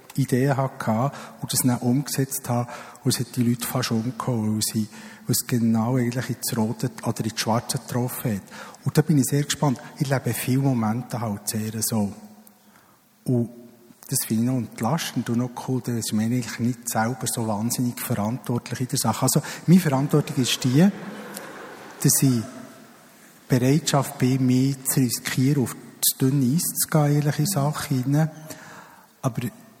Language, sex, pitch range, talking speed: German, male, 120-145 Hz, 155 wpm